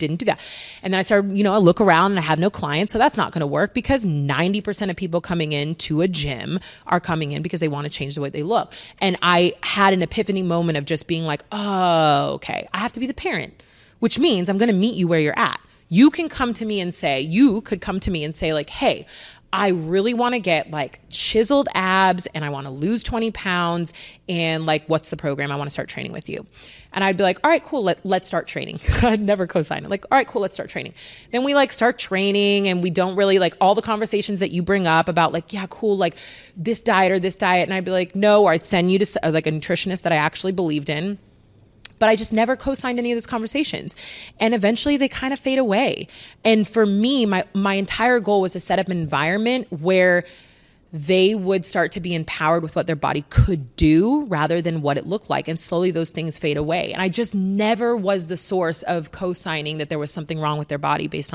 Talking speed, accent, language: 245 wpm, American, English